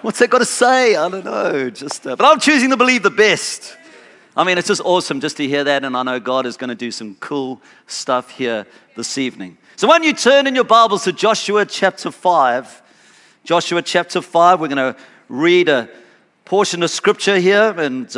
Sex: male